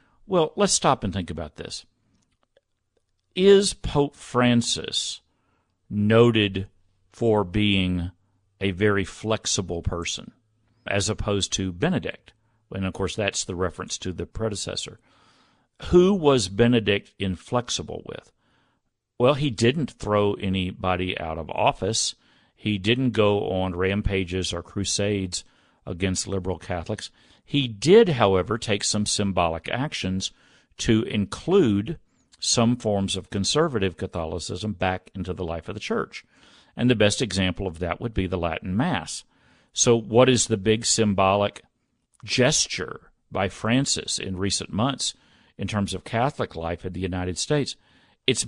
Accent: American